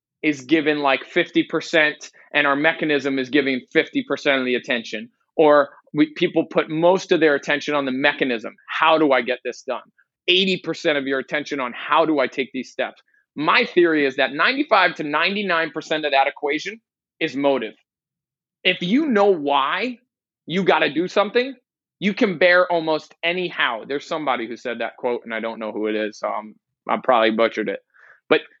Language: English